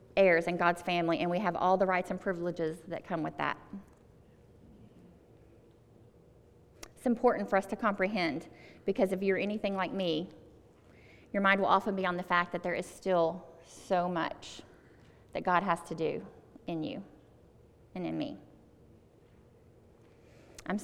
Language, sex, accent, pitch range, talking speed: English, female, American, 175-210 Hz, 155 wpm